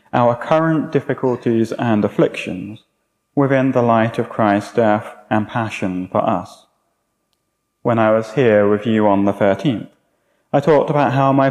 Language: English